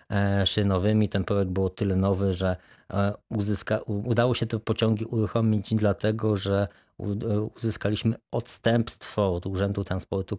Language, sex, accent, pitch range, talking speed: Polish, male, native, 95-105 Hz, 115 wpm